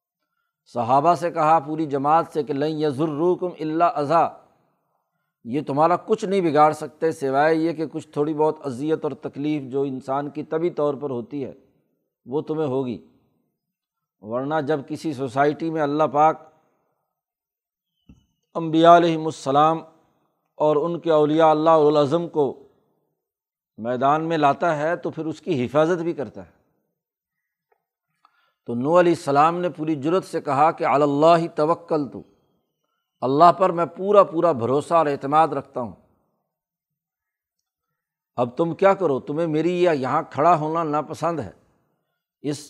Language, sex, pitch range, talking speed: Urdu, male, 145-170 Hz, 145 wpm